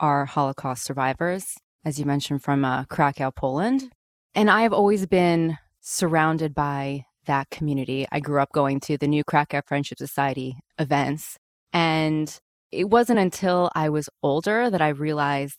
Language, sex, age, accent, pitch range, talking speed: English, female, 20-39, American, 140-165 Hz, 155 wpm